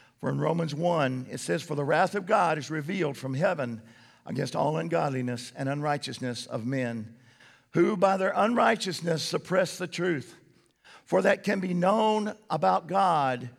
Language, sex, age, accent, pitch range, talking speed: English, male, 50-69, American, 130-195 Hz, 160 wpm